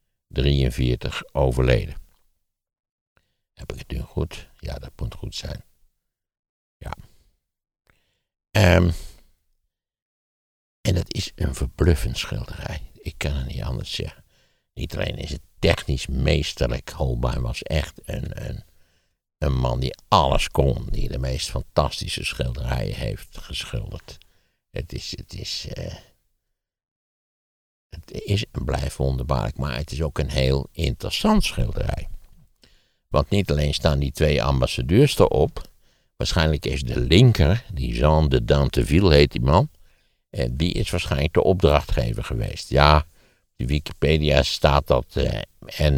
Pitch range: 65-85 Hz